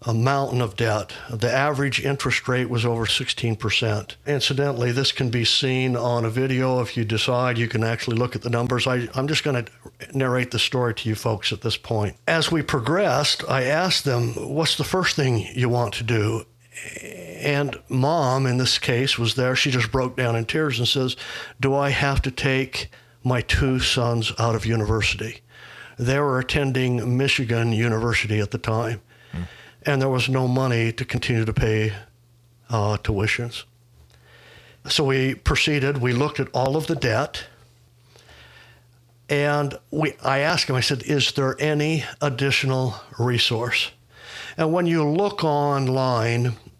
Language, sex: English, male